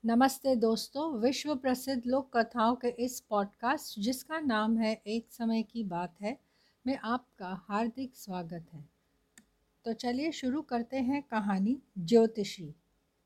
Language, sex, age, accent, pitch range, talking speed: Hindi, female, 60-79, native, 210-260 Hz, 130 wpm